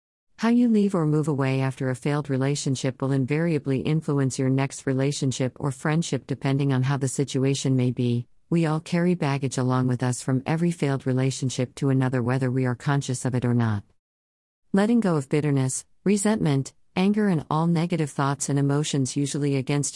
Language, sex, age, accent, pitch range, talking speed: English, female, 50-69, American, 130-155 Hz, 180 wpm